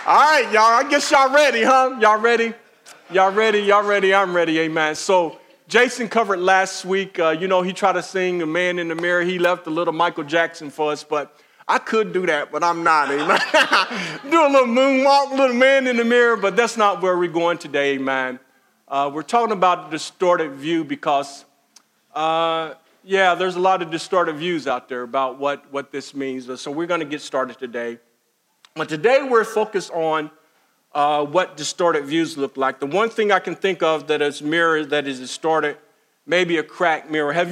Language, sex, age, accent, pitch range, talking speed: English, male, 50-69, American, 155-205 Hz, 200 wpm